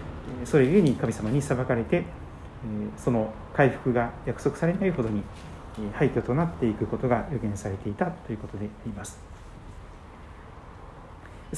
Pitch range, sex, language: 105-160 Hz, male, Japanese